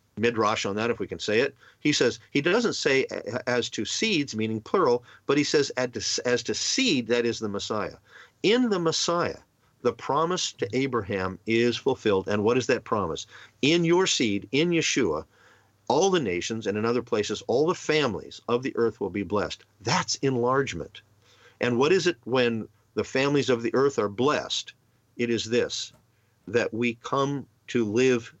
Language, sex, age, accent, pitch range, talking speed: English, male, 50-69, American, 110-130 Hz, 180 wpm